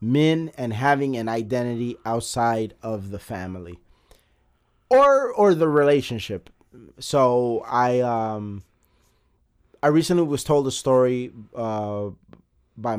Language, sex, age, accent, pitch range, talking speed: English, male, 30-49, American, 100-130 Hz, 110 wpm